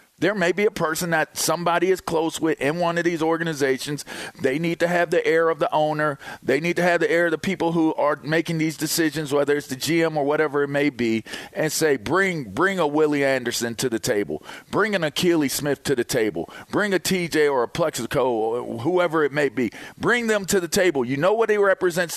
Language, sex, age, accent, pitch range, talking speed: English, male, 40-59, American, 130-165 Hz, 230 wpm